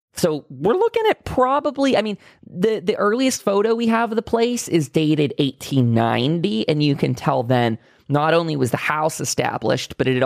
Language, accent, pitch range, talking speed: English, American, 130-190 Hz, 195 wpm